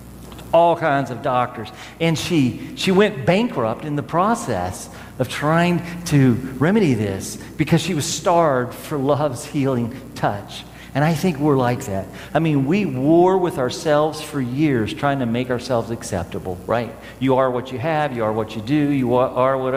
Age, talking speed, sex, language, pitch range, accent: 50-69, 175 wpm, male, English, 115-170 Hz, American